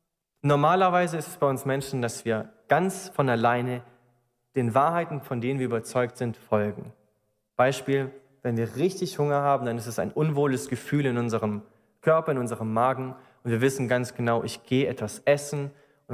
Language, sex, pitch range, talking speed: German, male, 120-150 Hz, 175 wpm